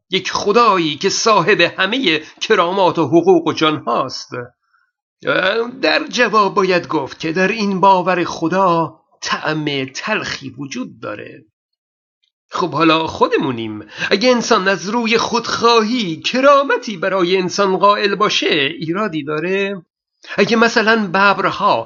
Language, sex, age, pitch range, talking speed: Persian, male, 50-69, 170-220 Hz, 115 wpm